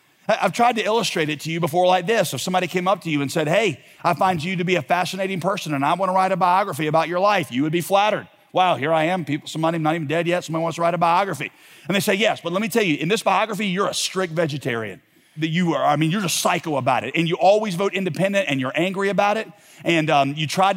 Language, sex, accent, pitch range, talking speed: English, male, American, 150-195 Hz, 275 wpm